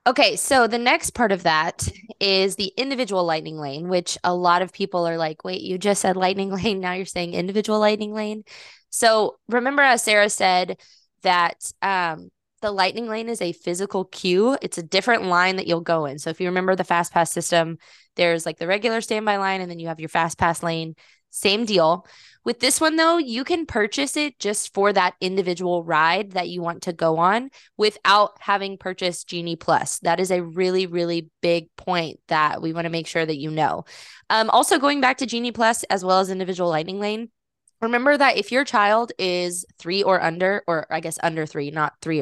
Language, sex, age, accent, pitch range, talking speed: English, female, 20-39, American, 170-215 Hz, 210 wpm